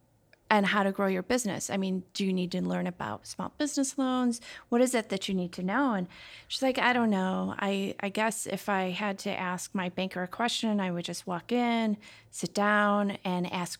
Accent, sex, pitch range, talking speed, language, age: American, female, 190-235 Hz, 225 wpm, English, 30-49